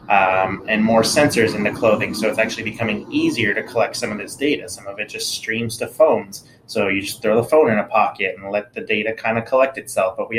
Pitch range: 100-115 Hz